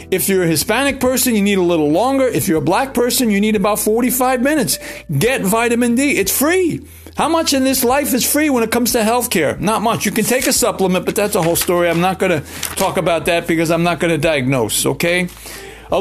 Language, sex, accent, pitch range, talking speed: English, male, American, 145-205 Hz, 245 wpm